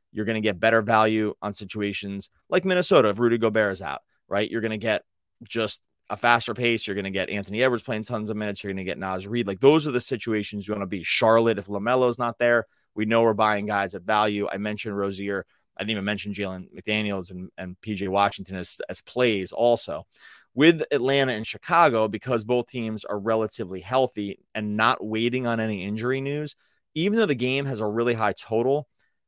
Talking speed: 215 wpm